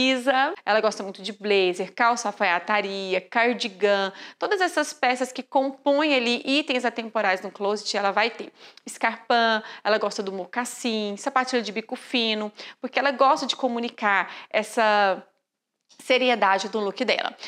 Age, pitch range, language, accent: 30-49, 220-270 Hz, Portuguese, Brazilian